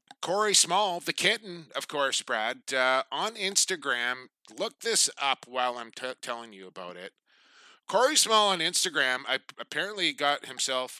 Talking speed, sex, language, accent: 140 wpm, male, English, American